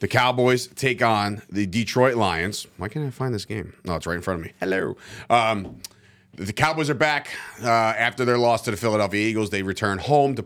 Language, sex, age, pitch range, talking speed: English, male, 30-49, 100-130 Hz, 220 wpm